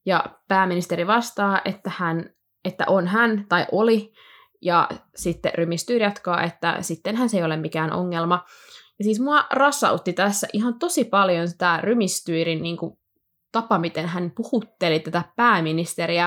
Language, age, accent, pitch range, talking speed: Finnish, 20-39, native, 170-215 Hz, 140 wpm